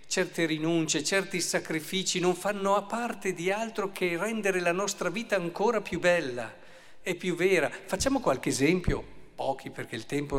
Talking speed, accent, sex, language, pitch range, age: 160 wpm, native, male, Italian, 140-205 Hz, 50-69